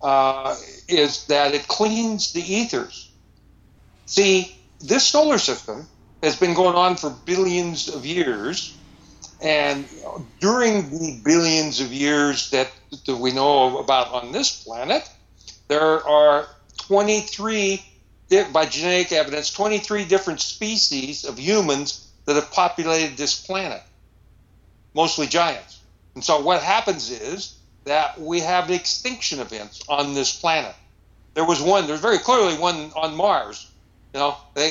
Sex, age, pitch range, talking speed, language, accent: male, 60-79, 125-180 Hz, 130 wpm, English, American